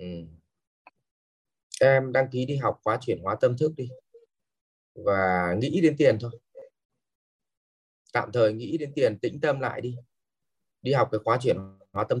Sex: male